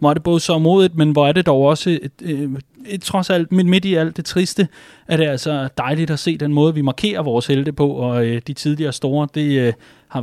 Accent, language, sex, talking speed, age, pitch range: native, Danish, male, 230 wpm, 30-49, 125-160 Hz